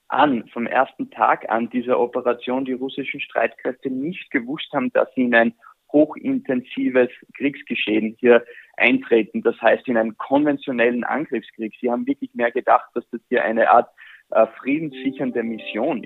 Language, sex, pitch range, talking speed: German, male, 115-140 Hz, 150 wpm